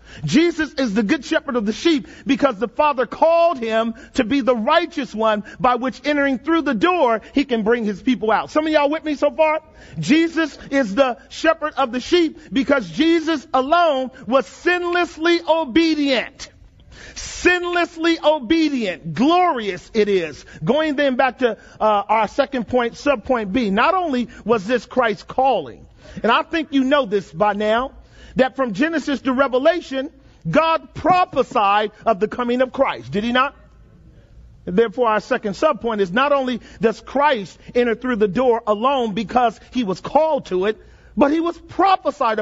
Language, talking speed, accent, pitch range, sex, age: English, 170 wpm, American, 230-305 Hz, male, 40-59